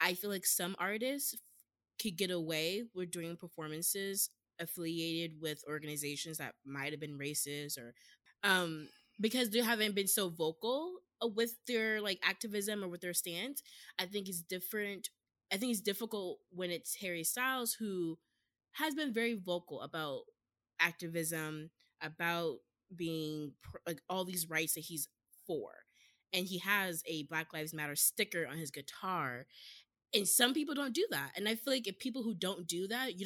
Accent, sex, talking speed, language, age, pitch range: American, female, 160 wpm, English, 20-39, 160-225 Hz